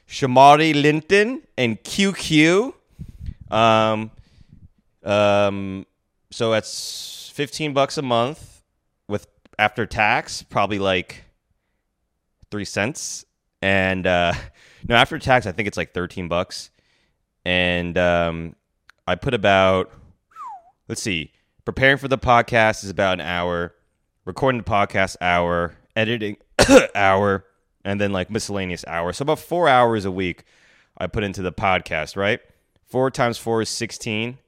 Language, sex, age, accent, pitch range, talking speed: English, male, 20-39, American, 90-115 Hz, 125 wpm